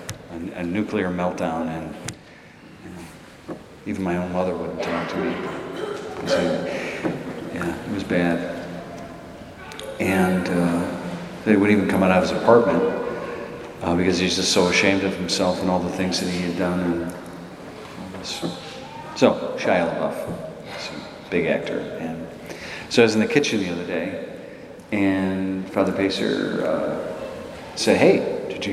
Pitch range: 90-100 Hz